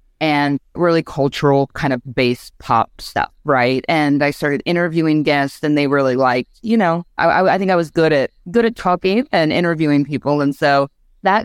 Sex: female